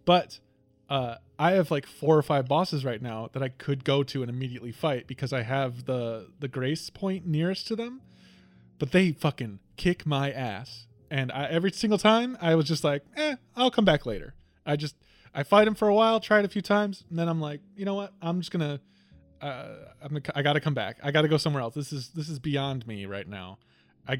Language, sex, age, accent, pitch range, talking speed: English, male, 20-39, American, 130-175 Hz, 230 wpm